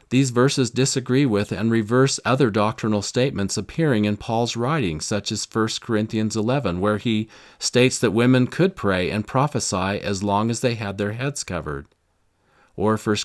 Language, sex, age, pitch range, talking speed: English, male, 40-59, 100-120 Hz, 170 wpm